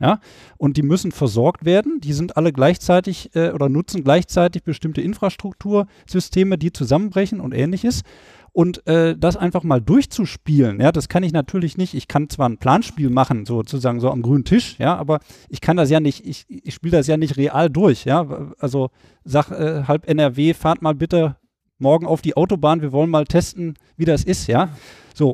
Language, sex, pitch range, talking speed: German, male, 145-175 Hz, 190 wpm